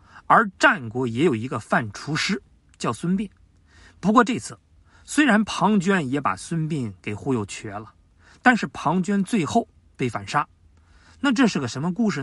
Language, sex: Chinese, male